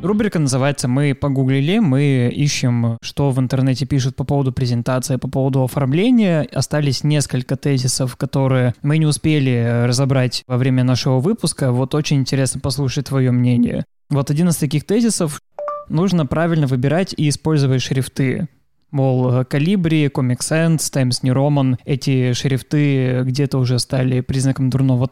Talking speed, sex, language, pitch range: 135 wpm, male, Russian, 130-150 Hz